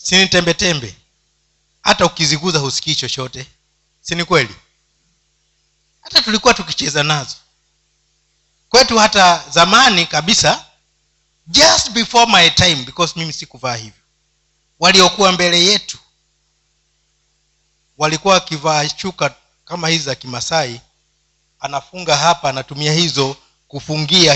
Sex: male